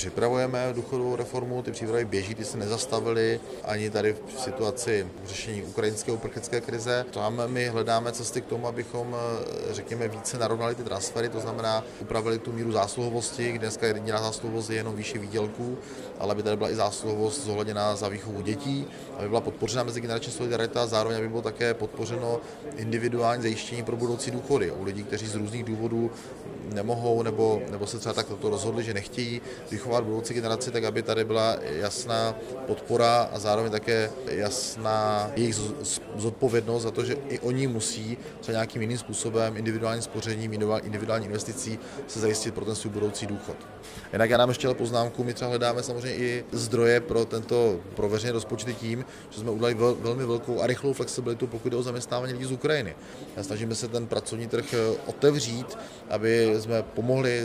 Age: 30-49